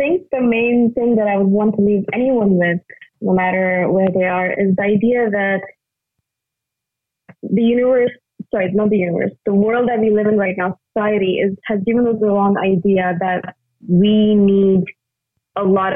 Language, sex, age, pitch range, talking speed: English, female, 20-39, 180-210 Hz, 185 wpm